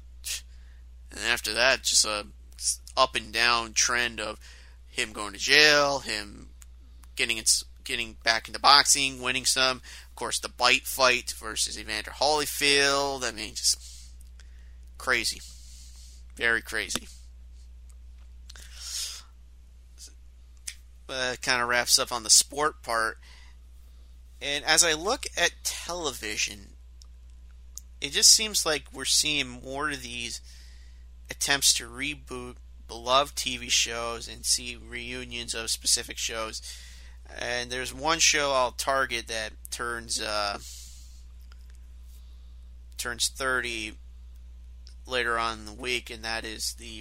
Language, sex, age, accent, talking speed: English, male, 30-49, American, 115 wpm